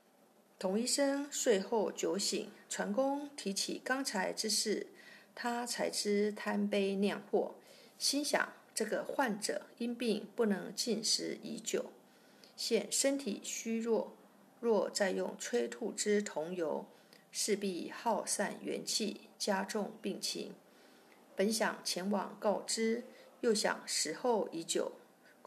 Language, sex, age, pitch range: Chinese, female, 50-69, 205-255 Hz